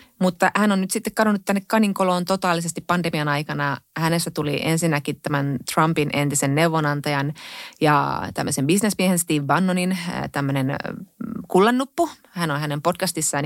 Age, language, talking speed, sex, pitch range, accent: 30-49, Finnish, 130 wpm, female, 145-190 Hz, native